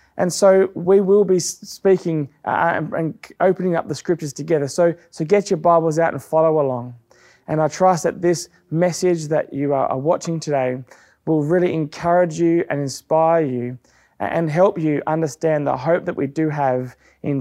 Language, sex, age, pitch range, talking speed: English, male, 20-39, 135-180 Hz, 170 wpm